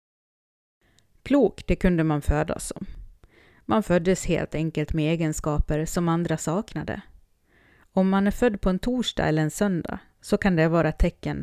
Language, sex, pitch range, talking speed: Swedish, female, 150-190 Hz, 160 wpm